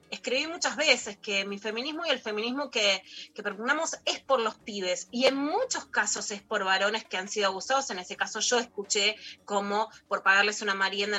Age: 20-39